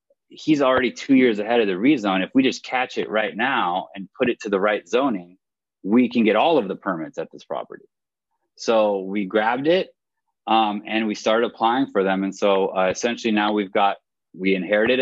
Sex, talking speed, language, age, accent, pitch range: male, 210 wpm, English, 30-49, American, 100-125 Hz